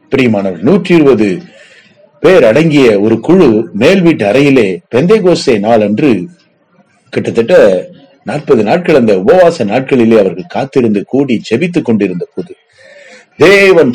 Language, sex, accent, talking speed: Tamil, male, native, 105 wpm